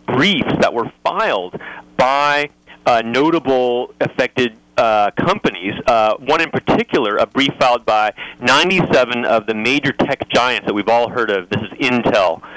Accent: American